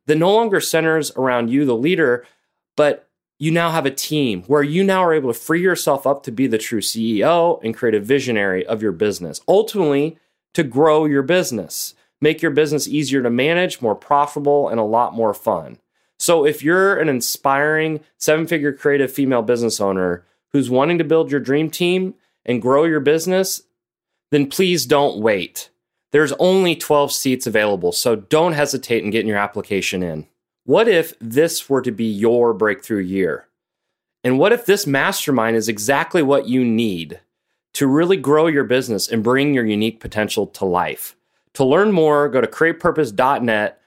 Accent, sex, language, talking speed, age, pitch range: American, male, English, 175 wpm, 30-49, 115-155 Hz